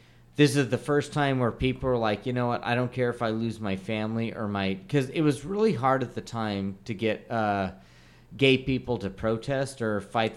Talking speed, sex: 225 wpm, male